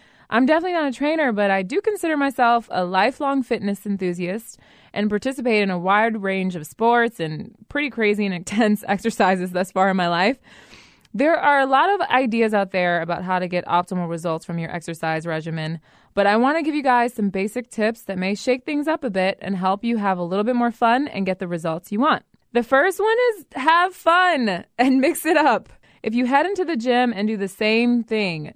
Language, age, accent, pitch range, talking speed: English, 20-39, American, 190-260 Hz, 220 wpm